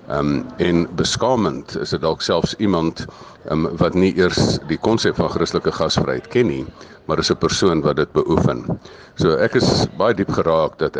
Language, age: English, 50-69